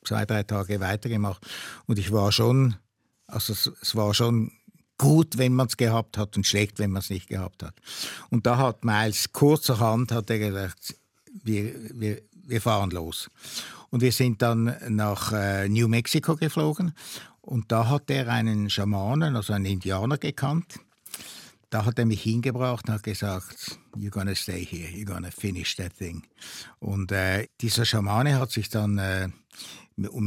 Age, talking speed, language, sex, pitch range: 60-79, 165 wpm, German, male, 105-135 Hz